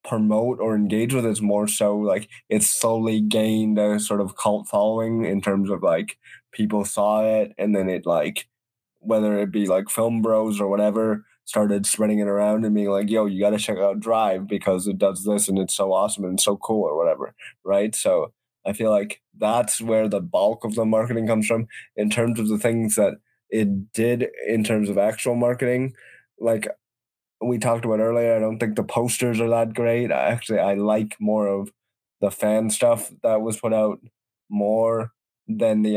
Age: 20-39